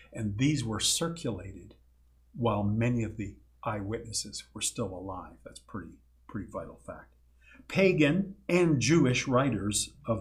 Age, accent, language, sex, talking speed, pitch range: 50-69, American, English, male, 130 wpm, 95-130 Hz